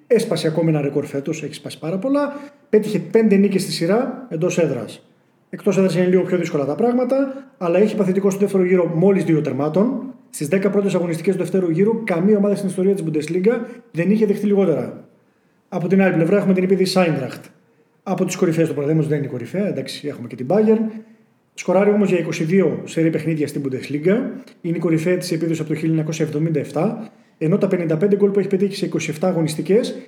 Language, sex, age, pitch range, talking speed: Greek, male, 30-49, 160-205 Hz, 195 wpm